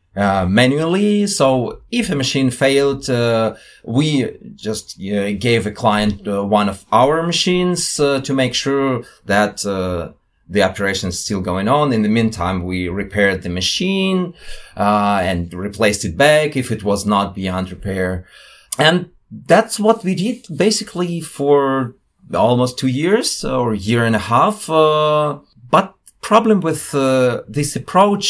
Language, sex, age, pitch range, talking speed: English, male, 30-49, 100-135 Hz, 150 wpm